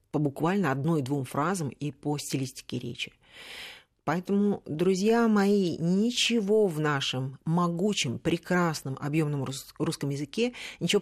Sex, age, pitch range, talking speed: female, 40-59, 150-195 Hz, 110 wpm